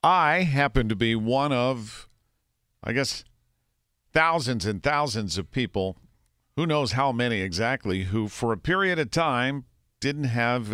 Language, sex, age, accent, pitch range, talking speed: English, male, 50-69, American, 100-125 Hz, 145 wpm